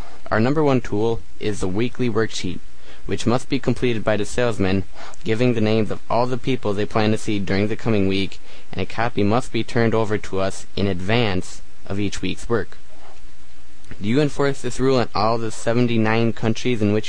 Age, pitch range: 20-39, 100-125 Hz